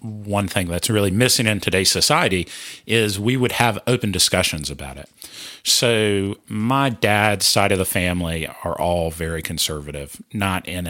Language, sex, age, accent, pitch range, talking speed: English, male, 50-69, American, 85-115 Hz, 160 wpm